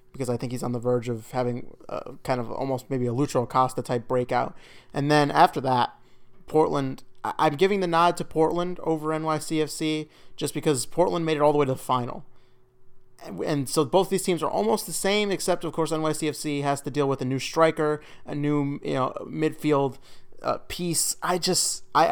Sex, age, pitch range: male, 30-49, 125-155 Hz